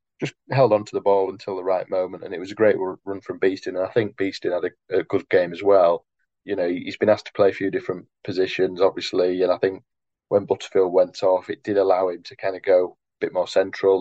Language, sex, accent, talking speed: English, male, British, 255 wpm